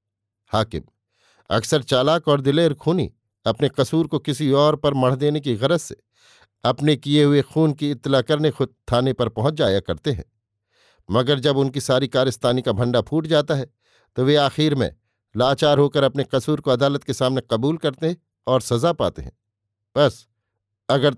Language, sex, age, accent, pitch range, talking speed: Hindi, male, 50-69, native, 125-150 Hz, 175 wpm